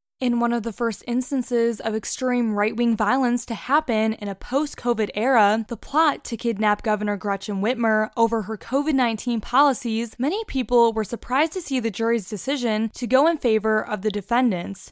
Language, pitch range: English, 210-250 Hz